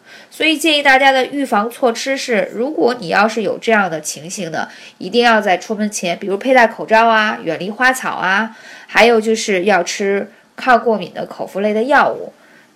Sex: female